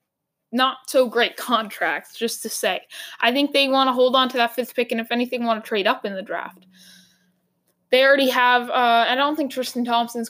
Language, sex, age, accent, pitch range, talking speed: English, female, 10-29, American, 220-270 Hz, 200 wpm